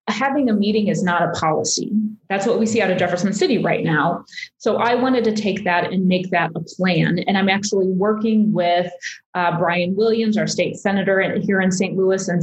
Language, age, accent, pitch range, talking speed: English, 30-49, American, 180-220 Hz, 210 wpm